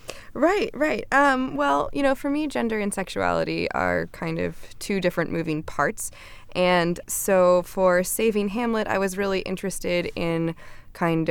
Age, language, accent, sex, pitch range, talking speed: 20-39, English, American, female, 160-195 Hz, 155 wpm